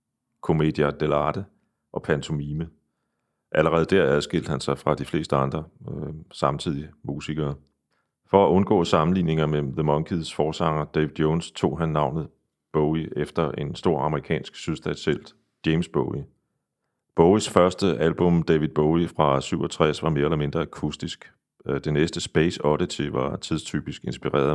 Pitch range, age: 70-80 Hz, 40-59